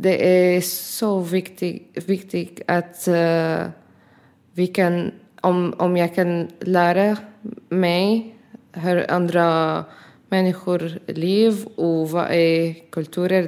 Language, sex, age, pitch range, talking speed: Swedish, female, 20-39, 165-185 Hz, 100 wpm